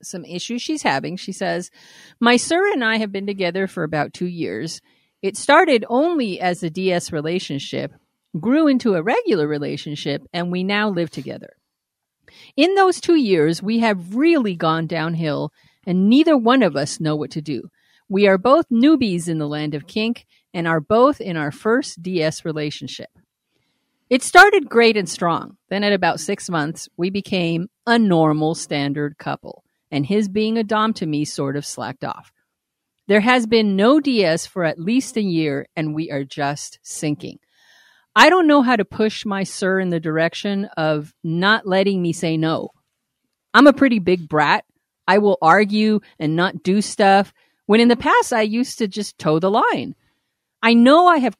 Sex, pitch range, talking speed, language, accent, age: female, 165-245 Hz, 180 wpm, English, American, 50-69